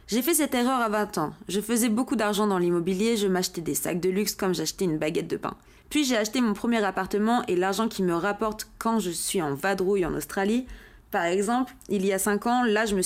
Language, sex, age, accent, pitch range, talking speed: French, female, 20-39, French, 190-240 Hz, 245 wpm